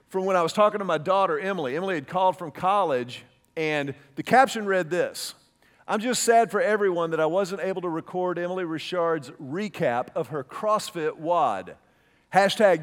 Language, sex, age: English, male, 40-59